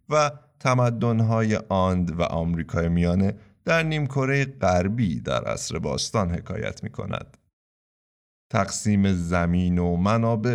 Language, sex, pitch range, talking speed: Persian, male, 85-125 Hz, 110 wpm